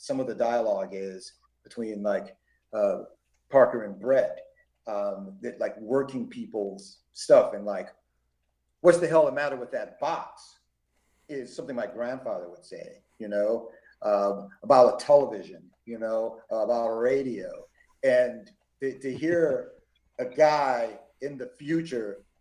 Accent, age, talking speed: American, 50-69, 140 wpm